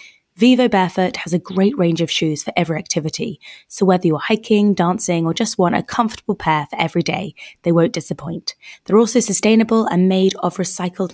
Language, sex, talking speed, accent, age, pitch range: English, female, 190 wpm, British, 20-39, 170-215 Hz